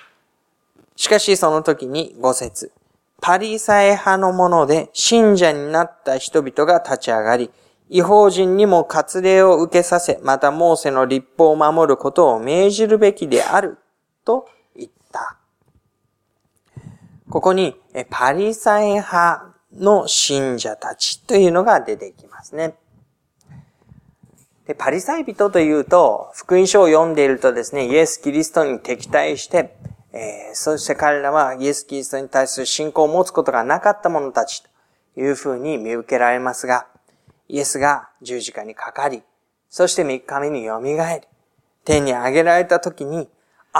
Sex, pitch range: male, 140-190 Hz